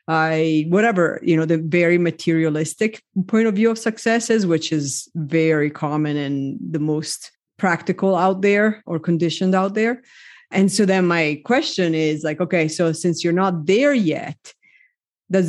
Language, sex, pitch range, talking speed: English, female, 165-200 Hz, 160 wpm